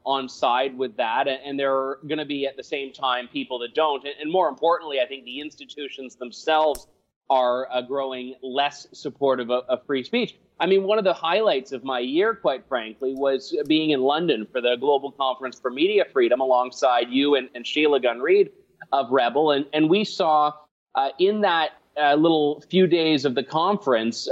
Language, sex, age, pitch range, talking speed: English, male, 30-49, 130-165 Hz, 190 wpm